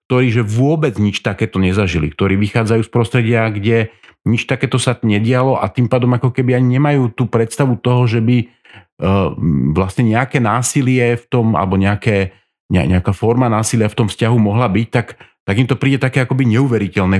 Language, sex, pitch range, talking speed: Slovak, male, 100-120 Hz, 180 wpm